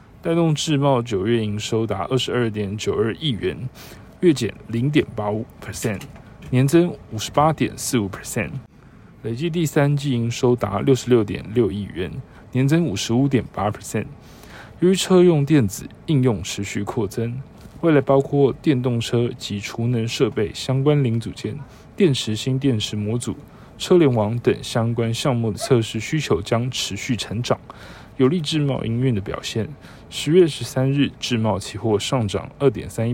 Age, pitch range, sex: 20-39, 110-140 Hz, male